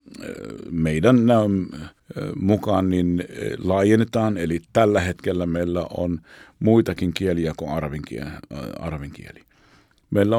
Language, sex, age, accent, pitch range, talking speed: Finnish, male, 50-69, native, 85-105 Hz, 85 wpm